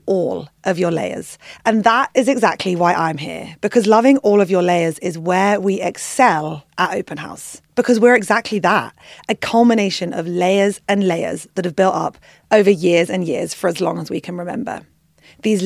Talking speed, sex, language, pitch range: 190 wpm, female, English, 175-215 Hz